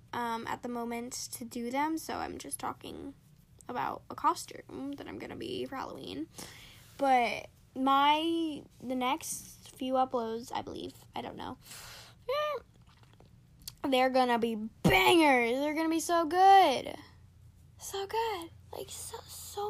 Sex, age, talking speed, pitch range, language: female, 10-29, 135 wpm, 250-310 Hz, English